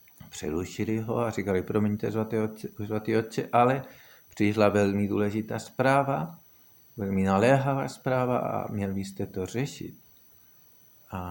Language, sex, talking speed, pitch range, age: Czech, male, 110 wpm, 95-115 Hz, 50-69